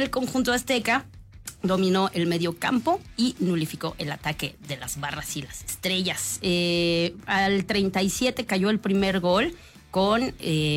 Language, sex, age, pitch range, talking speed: English, female, 30-49, 155-215 Hz, 145 wpm